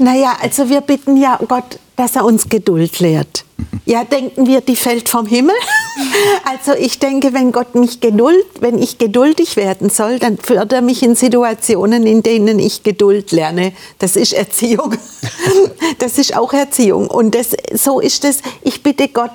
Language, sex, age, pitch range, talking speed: German, female, 60-79, 215-275 Hz, 175 wpm